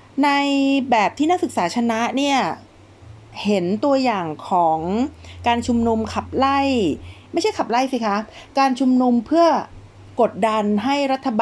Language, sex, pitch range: Thai, female, 190-245 Hz